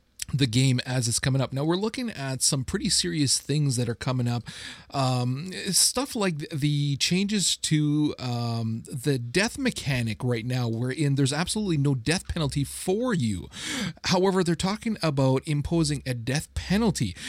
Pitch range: 125-165 Hz